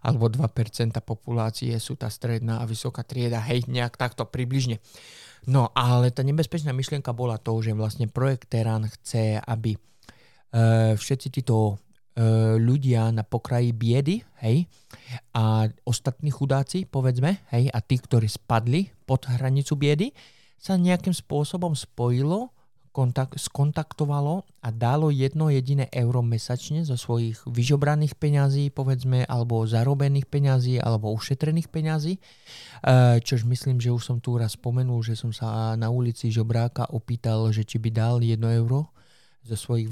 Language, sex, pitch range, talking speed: Slovak, male, 115-135 Hz, 140 wpm